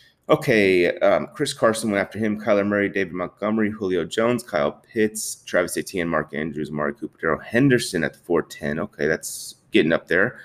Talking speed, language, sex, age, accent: 170 wpm, English, male, 30-49, American